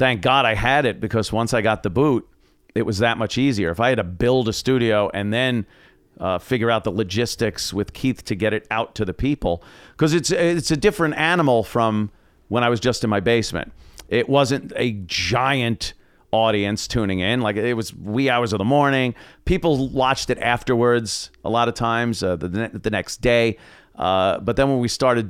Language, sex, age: English, male, 40-59